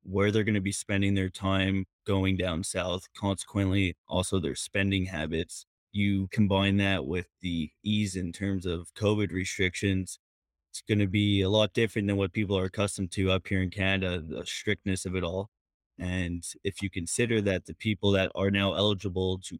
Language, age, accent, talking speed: English, 20-39, American, 185 wpm